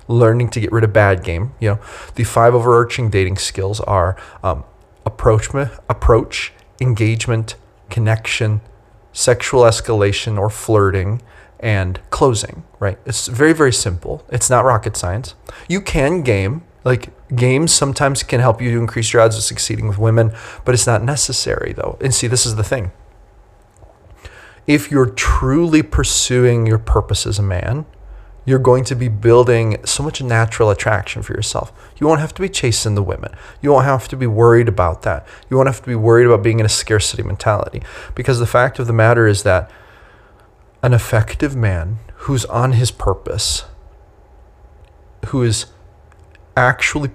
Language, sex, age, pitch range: English, male, 30-49, 100-125 Hz